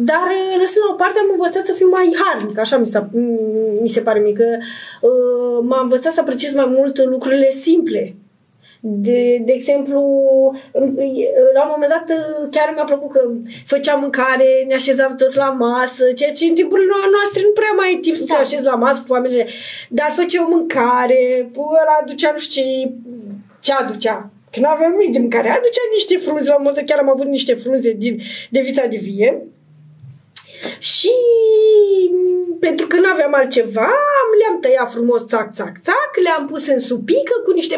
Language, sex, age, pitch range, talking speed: Romanian, female, 20-39, 245-350 Hz, 175 wpm